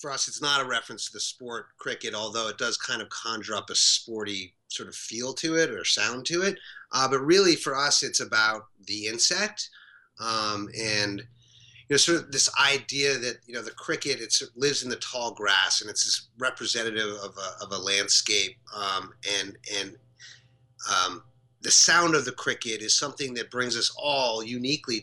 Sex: male